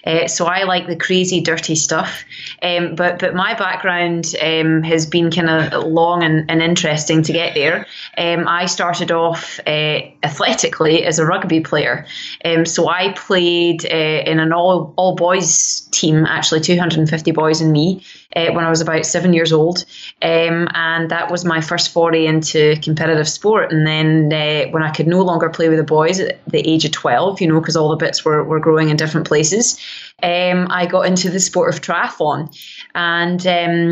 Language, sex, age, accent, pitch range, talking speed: English, female, 20-39, British, 160-175 Hz, 190 wpm